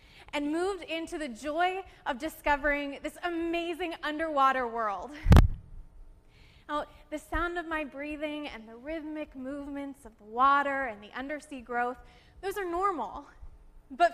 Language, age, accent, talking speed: English, 20-39, American, 135 wpm